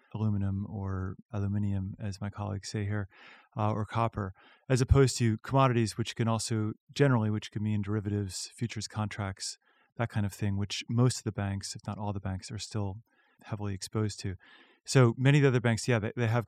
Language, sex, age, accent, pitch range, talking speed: English, male, 30-49, American, 100-115 Hz, 195 wpm